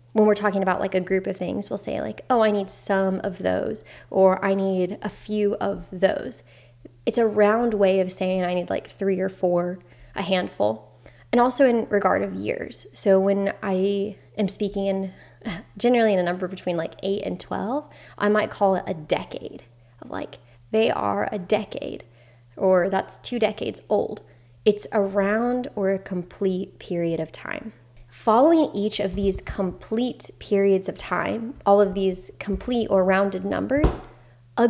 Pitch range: 180-210 Hz